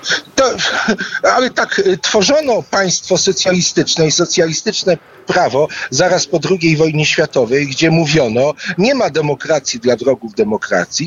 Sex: male